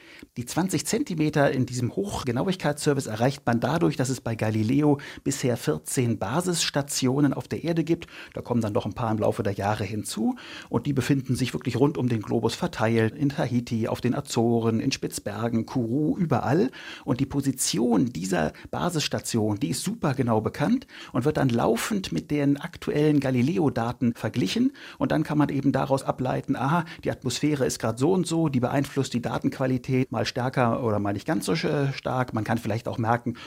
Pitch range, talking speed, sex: 115-145 Hz, 180 wpm, male